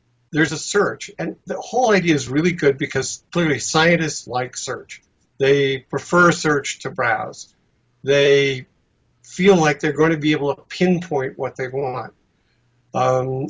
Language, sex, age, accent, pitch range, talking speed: English, male, 50-69, American, 130-160 Hz, 150 wpm